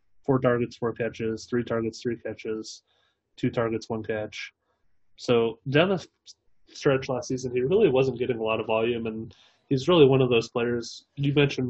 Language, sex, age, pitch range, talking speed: English, male, 20-39, 115-130 Hz, 180 wpm